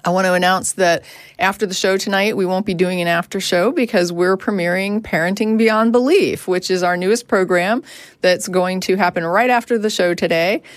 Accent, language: American, English